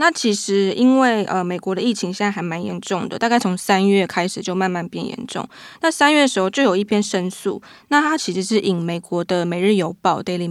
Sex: female